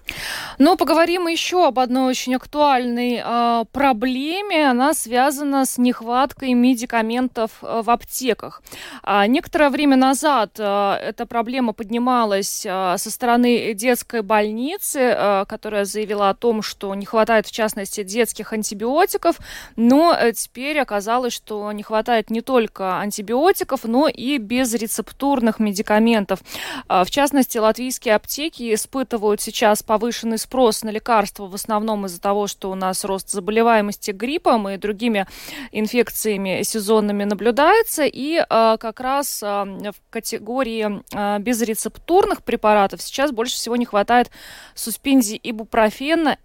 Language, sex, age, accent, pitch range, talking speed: Russian, female, 20-39, native, 210-255 Hz, 120 wpm